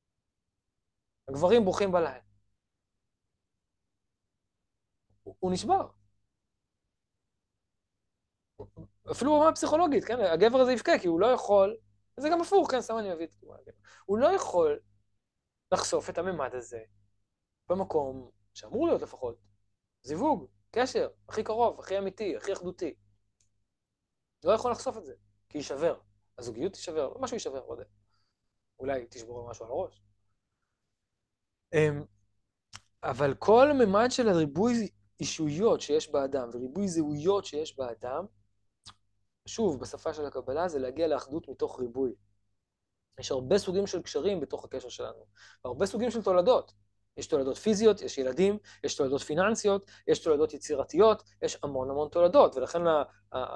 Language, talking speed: Hebrew, 120 wpm